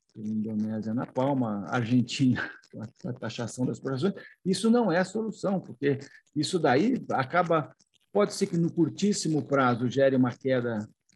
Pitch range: 135-195 Hz